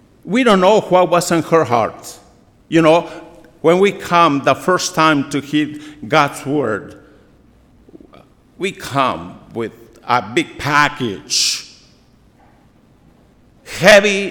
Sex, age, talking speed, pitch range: male, 50-69, 115 wpm, 140-190 Hz